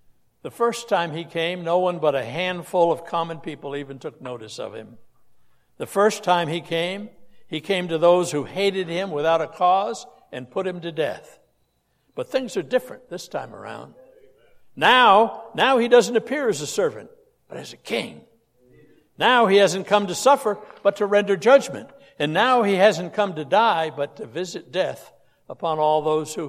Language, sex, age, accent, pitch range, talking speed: English, male, 60-79, American, 135-190 Hz, 185 wpm